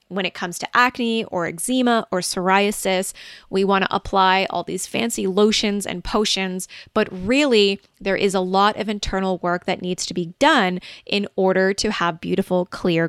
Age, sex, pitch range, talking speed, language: 20-39, female, 185-230 Hz, 180 wpm, English